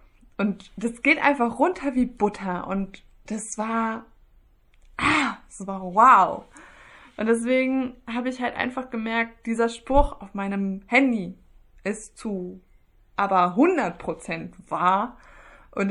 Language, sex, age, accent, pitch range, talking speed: German, female, 20-39, German, 185-230 Hz, 120 wpm